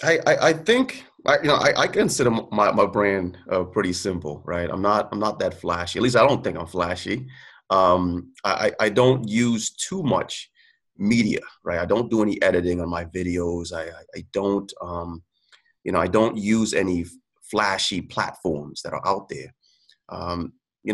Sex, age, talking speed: male, 30-49, 185 wpm